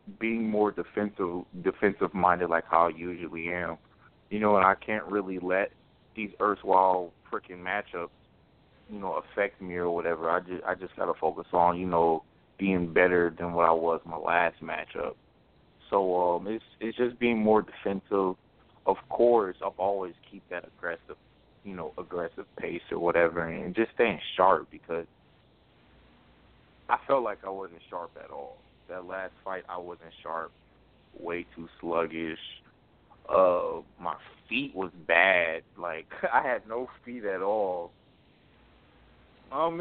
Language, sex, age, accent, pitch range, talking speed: English, male, 20-39, American, 85-110 Hz, 155 wpm